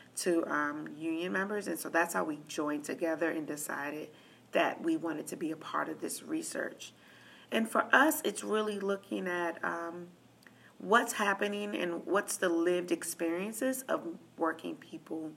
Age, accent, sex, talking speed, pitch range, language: 40-59, American, female, 160 wpm, 165-205 Hz, English